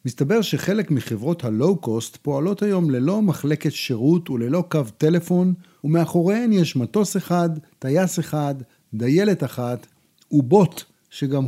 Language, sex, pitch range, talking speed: Hebrew, male, 130-185 Hz, 115 wpm